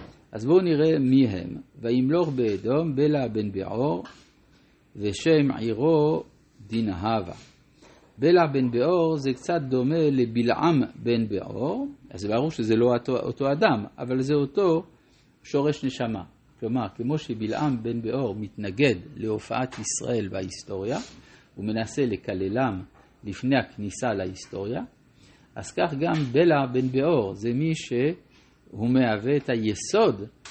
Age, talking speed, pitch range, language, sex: 50-69, 120 wpm, 110-140 Hz, Hebrew, male